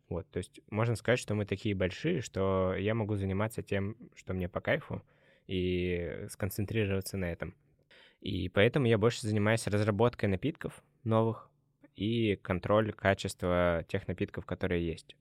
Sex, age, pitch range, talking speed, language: male, 20-39, 90-105 Hz, 145 wpm, Russian